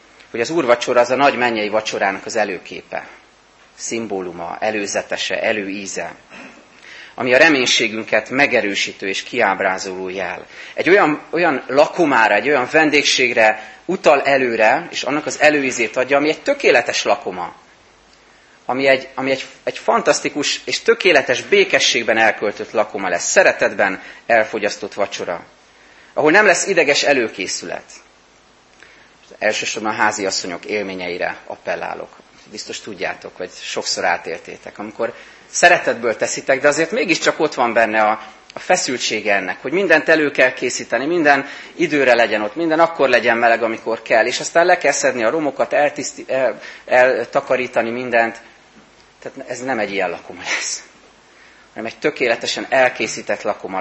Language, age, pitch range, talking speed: Hungarian, 30-49, 110-145 Hz, 130 wpm